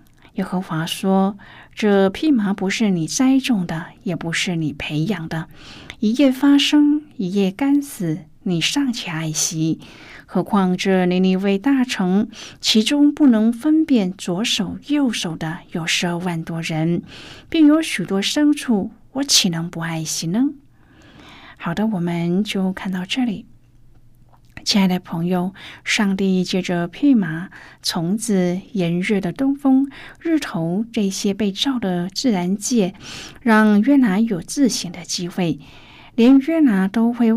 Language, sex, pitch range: Chinese, female, 170-240 Hz